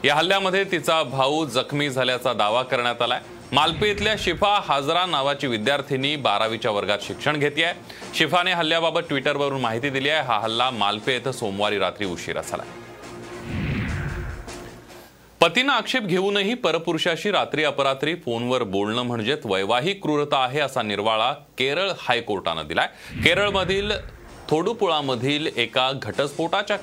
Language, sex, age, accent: Marathi, male, 30-49, native